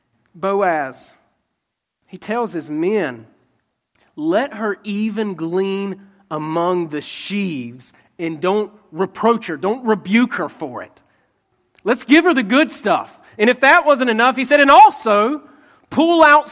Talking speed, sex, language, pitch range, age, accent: 140 wpm, male, English, 150-245 Hz, 40-59, American